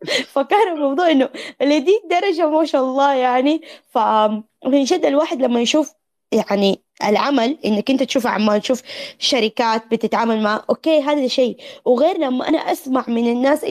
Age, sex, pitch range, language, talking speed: 20-39, female, 225-295 Hz, Arabic, 145 wpm